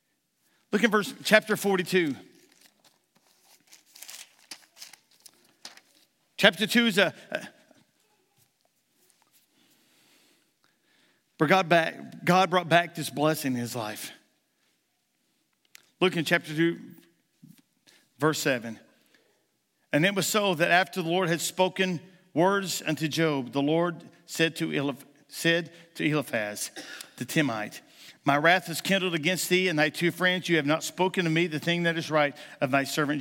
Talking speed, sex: 135 wpm, male